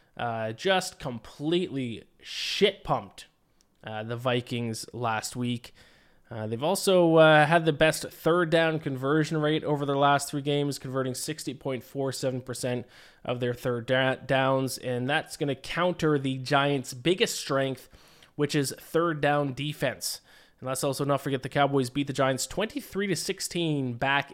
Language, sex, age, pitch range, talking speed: English, male, 20-39, 125-155 Hz, 140 wpm